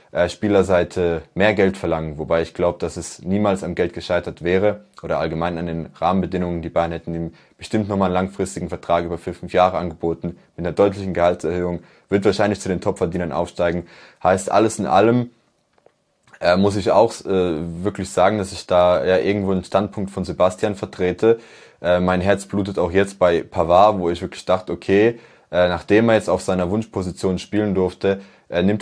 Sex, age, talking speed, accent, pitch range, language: male, 20-39, 180 wpm, German, 90-100 Hz, German